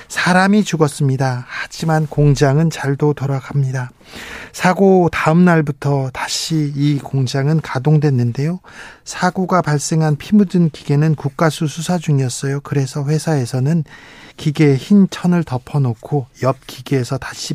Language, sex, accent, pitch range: Korean, male, native, 135-160 Hz